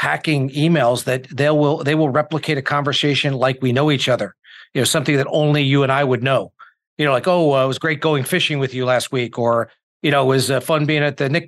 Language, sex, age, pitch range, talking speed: English, male, 40-59, 130-160 Hz, 260 wpm